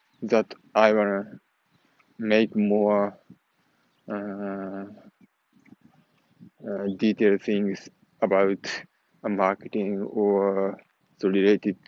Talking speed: 70 wpm